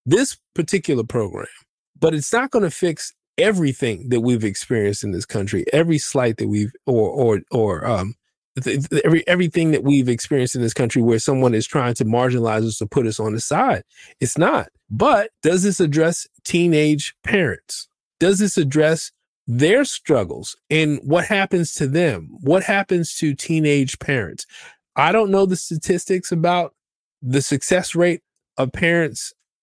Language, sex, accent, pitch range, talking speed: English, male, American, 125-170 Hz, 165 wpm